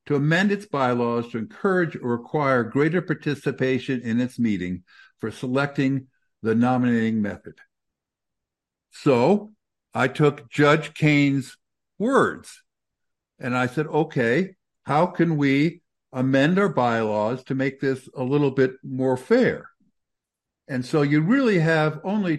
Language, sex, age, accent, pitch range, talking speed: English, male, 60-79, American, 120-165 Hz, 130 wpm